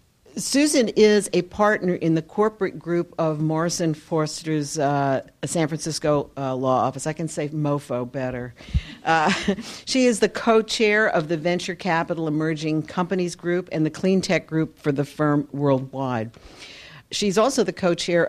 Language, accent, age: English, American, 60-79